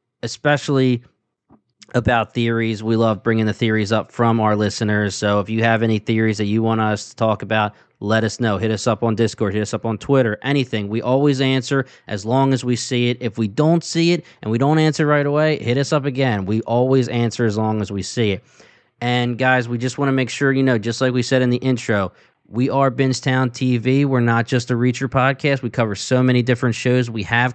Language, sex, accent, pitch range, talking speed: English, male, American, 115-130 Hz, 235 wpm